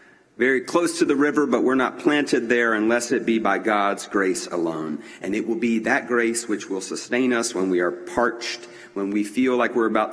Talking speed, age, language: 220 wpm, 40-59, English